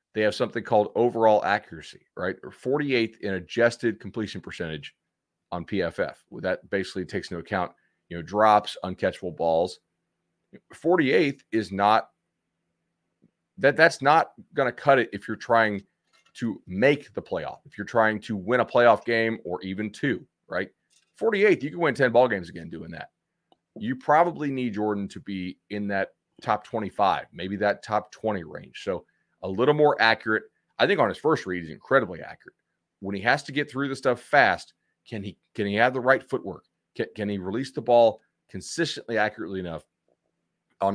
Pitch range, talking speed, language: 100-130 Hz, 175 wpm, English